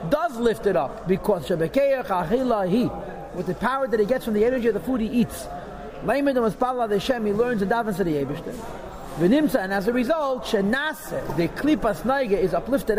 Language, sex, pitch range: English, male, 205-265 Hz